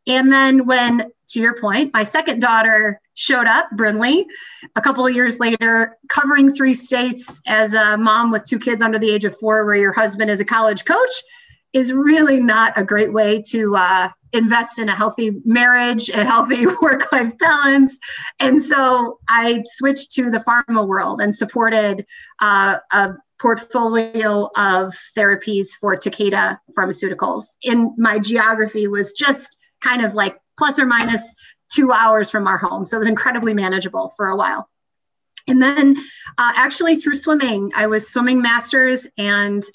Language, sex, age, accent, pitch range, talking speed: English, female, 30-49, American, 210-250 Hz, 165 wpm